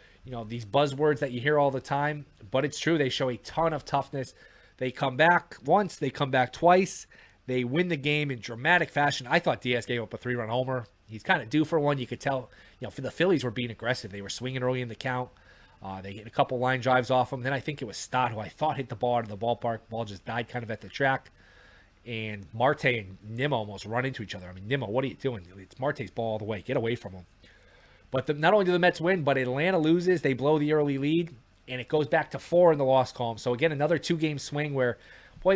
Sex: male